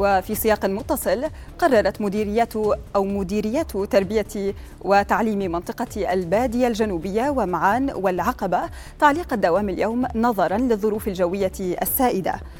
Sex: female